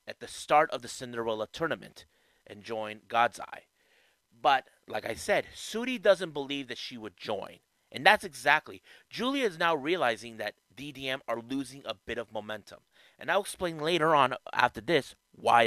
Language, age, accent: English, 30-49, American